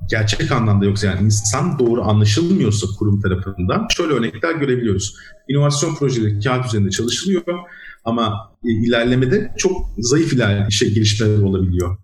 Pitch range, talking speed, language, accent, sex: 110-145 Hz, 120 wpm, Turkish, native, male